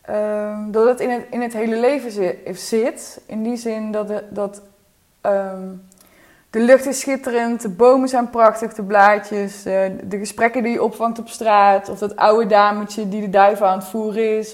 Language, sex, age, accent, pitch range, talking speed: Dutch, female, 20-39, Dutch, 205-235 Hz, 175 wpm